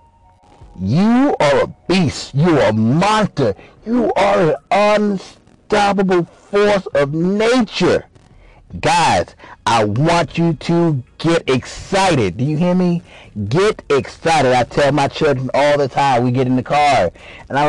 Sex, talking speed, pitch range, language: male, 145 wpm, 110-175 Hz, English